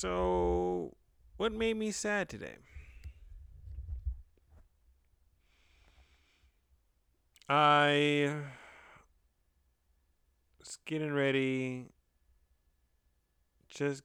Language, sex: English, male